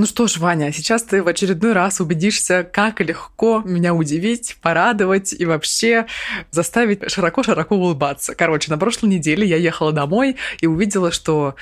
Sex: female